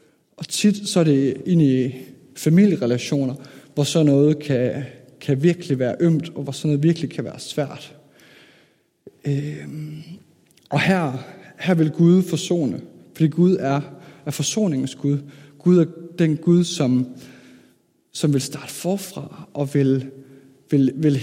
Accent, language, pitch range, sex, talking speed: native, Danish, 135-170 Hz, male, 135 wpm